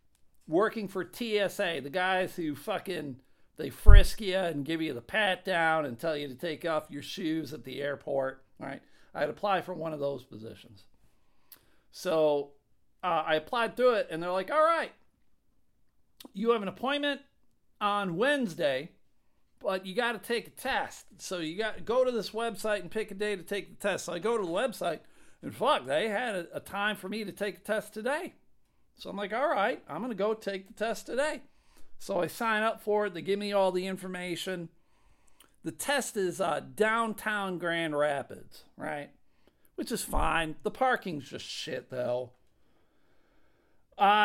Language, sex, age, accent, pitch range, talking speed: English, male, 50-69, American, 160-220 Hz, 185 wpm